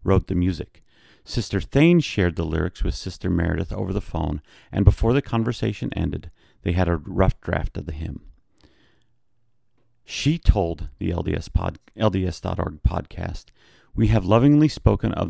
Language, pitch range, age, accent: English, 90-110 Hz, 40-59, American